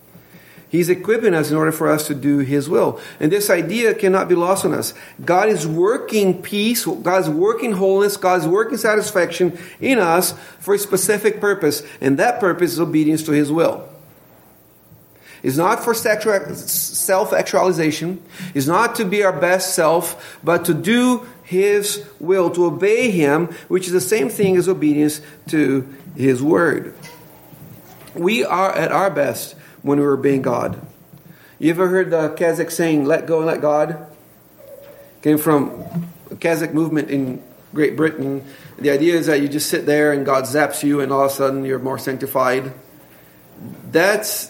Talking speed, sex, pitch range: 165 wpm, male, 150-190 Hz